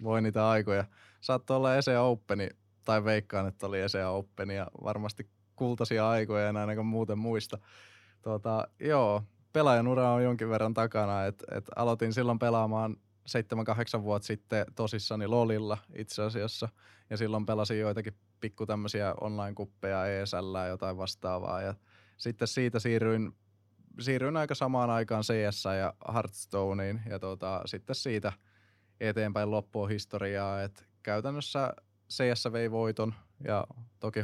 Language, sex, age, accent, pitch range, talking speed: Finnish, male, 20-39, native, 100-115 Hz, 135 wpm